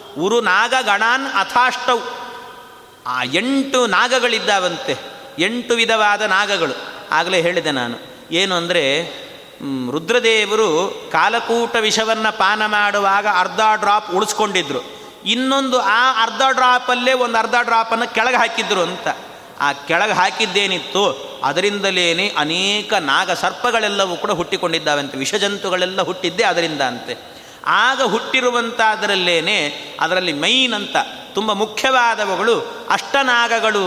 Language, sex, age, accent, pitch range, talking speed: Kannada, male, 30-49, native, 200-245 Hz, 95 wpm